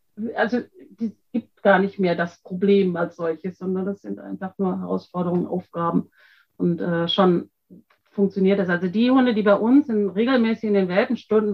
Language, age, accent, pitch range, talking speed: German, 40-59, German, 190-230 Hz, 170 wpm